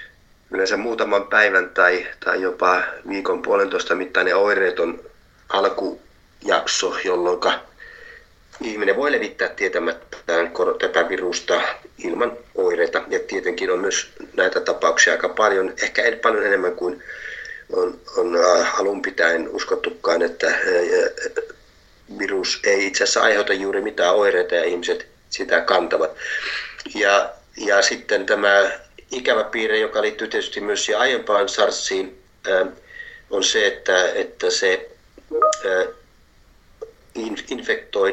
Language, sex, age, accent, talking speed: Finnish, male, 30-49, native, 110 wpm